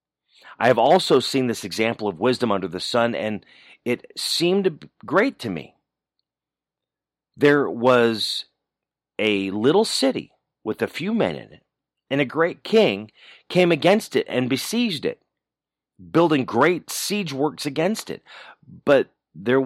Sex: male